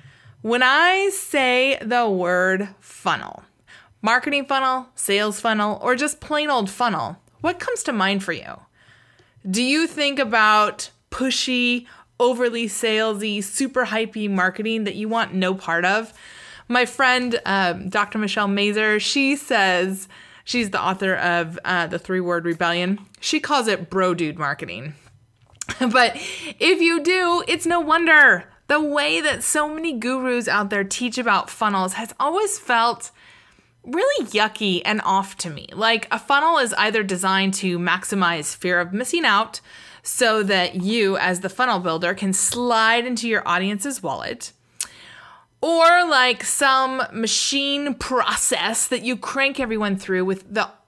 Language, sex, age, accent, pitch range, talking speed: English, female, 20-39, American, 190-260 Hz, 145 wpm